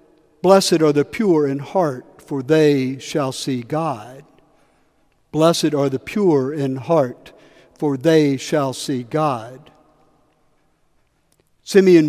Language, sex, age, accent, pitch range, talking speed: English, male, 60-79, American, 135-175 Hz, 115 wpm